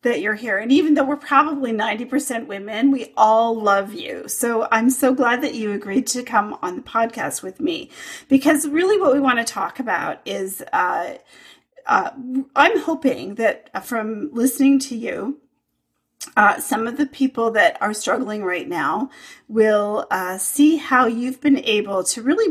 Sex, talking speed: female, 175 wpm